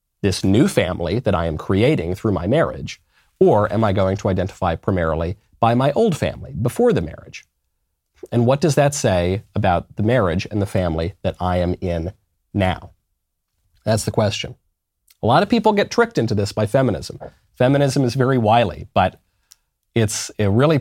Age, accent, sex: 40-59, American, male